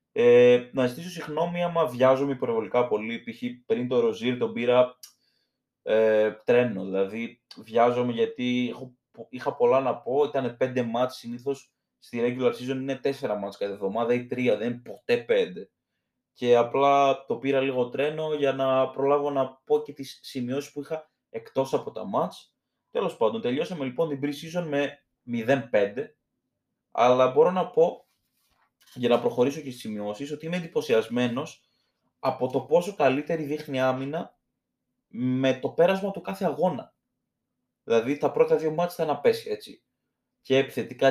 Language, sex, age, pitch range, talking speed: Greek, male, 20-39, 120-160 Hz, 155 wpm